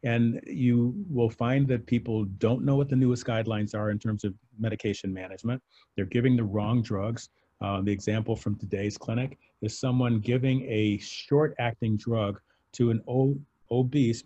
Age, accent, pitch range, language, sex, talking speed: 40-59, American, 110-140 Hz, English, male, 165 wpm